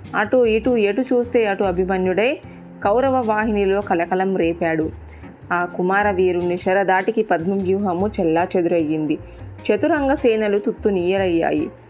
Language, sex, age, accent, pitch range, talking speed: Telugu, female, 20-39, native, 170-205 Hz, 105 wpm